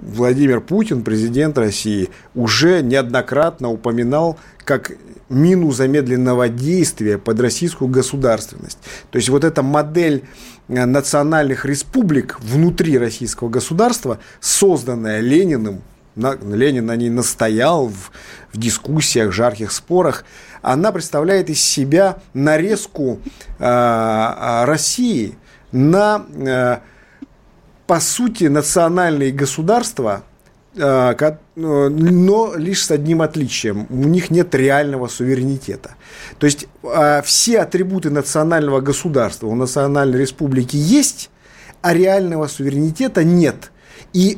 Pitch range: 125-175 Hz